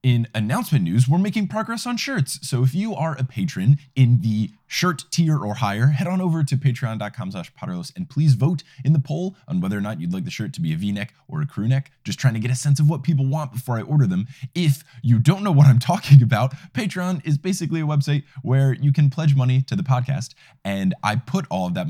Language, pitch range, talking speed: English, 130-170 Hz, 240 wpm